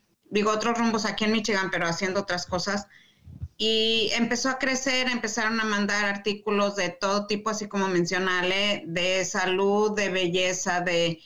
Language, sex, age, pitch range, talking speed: Spanish, female, 30-49, 180-215 Hz, 155 wpm